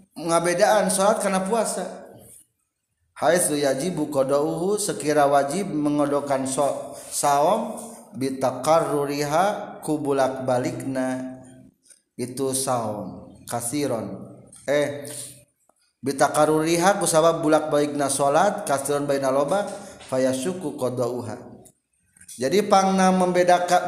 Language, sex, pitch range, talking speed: Indonesian, male, 130-170 Hz, 75 wpm